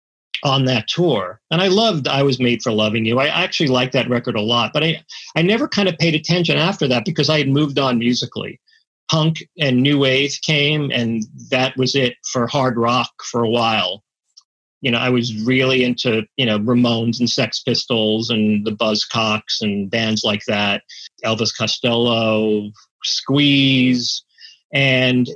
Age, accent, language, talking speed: 40-59, American, English, 175 wpm